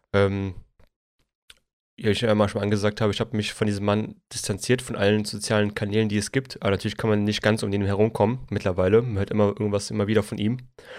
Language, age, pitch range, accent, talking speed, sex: German, 20-39, 105-115 Hz, German, 215 wpm, male